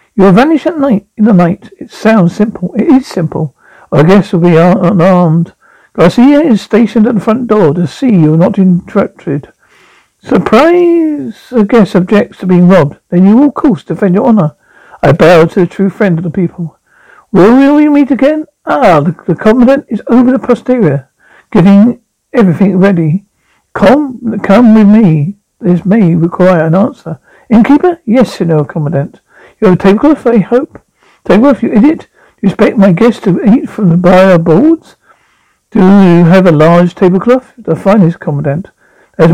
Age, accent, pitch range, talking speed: 60-79, British, 175-240 Hz, 175 wpm